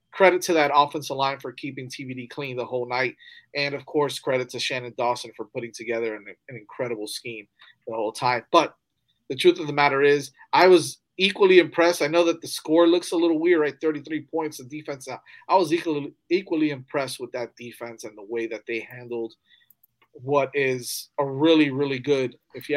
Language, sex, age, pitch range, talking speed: English, male, 30-49, 120-145 Hz, 200 wpm